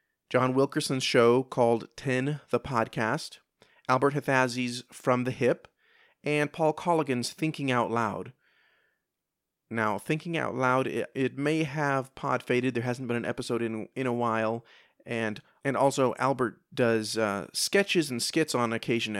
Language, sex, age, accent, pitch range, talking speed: English, male, 30-49, American, 115-150 Hz, 150 wpm